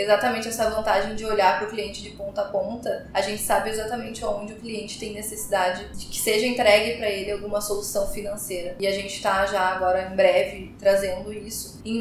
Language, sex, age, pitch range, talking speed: Portuguese, female, 10-29, 195-220 Hz, 200 wpm